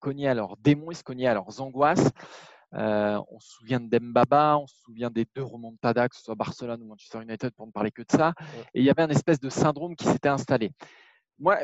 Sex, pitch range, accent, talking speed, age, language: male, 120-185 Hz, French, 255 wpm, 20-39, French